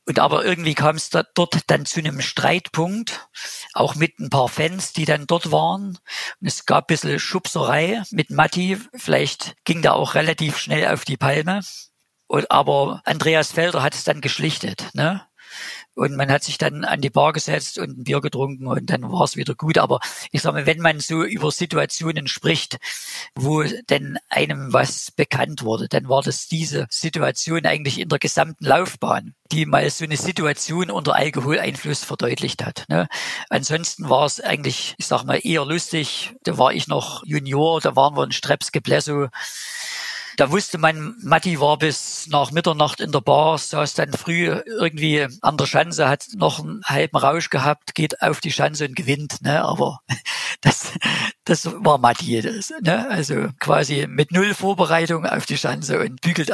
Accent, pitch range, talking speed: German, 145-175 Hz, 180 wpm